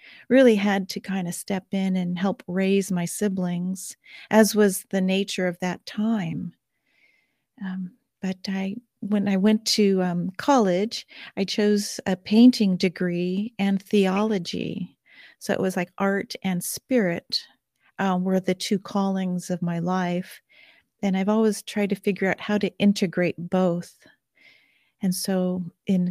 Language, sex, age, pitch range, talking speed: English, female, 40-59, 180-205 Hz, 145 wpm